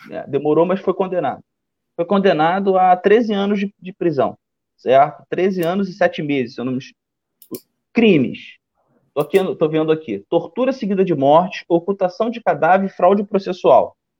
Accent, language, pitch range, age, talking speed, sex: Brazilian, Portuguese, 145-210 Hz, 20-39, 150 wpm, male